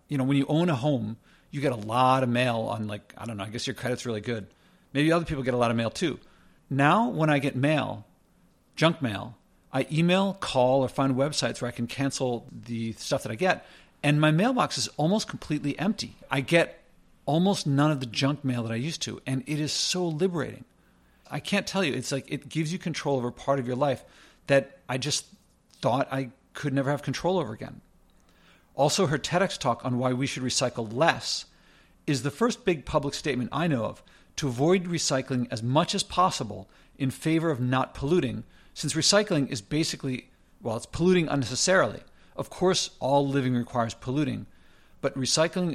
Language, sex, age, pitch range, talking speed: English, male, 50-69, 125-155 Hz, 200 wpm